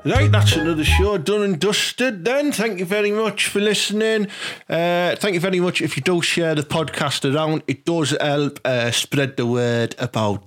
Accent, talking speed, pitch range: British, 195 wpm, 115-165 Hz